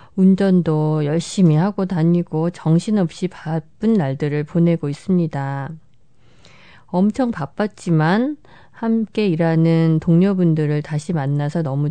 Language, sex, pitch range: Korean, female, 155-195 Hz